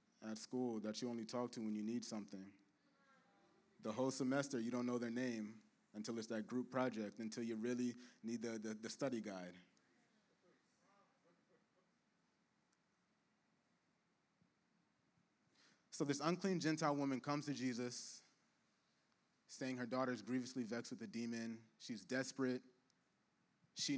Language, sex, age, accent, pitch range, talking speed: English, male, 20-39, American, 110-135 Hz, 130 wpm